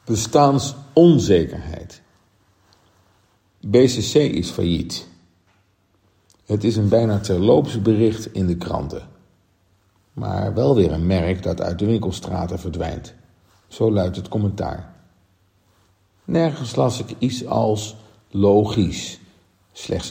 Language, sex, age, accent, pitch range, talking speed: Dutch, male, 50-69, Dutch, 90-110 Hz, 100 wpm